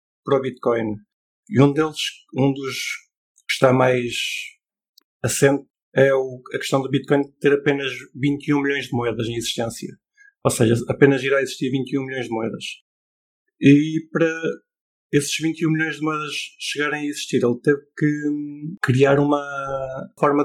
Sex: male